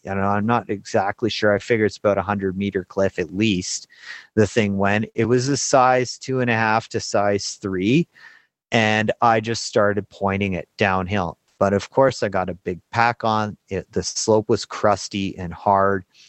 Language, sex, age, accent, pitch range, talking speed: English, male, 30-49, American, 100-115 Hz, 190 wpm